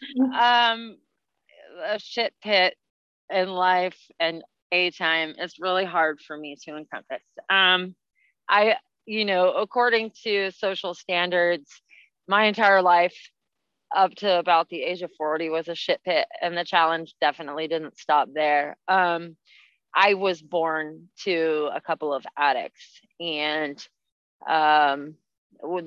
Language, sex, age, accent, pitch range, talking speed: English, female, 30-49, American, 160-205 Hz, 130 wpm